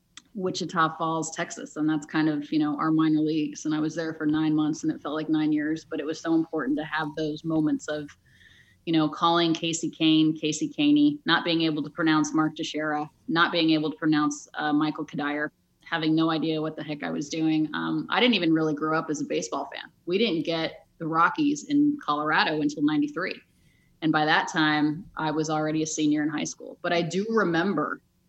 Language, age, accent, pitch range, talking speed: English, 30-49, American, 155-170 Hz, 215 wpm